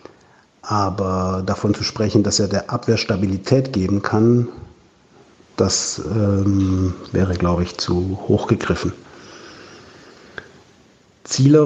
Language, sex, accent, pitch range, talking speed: German, male, German, 100-120 Hz, 105 wpm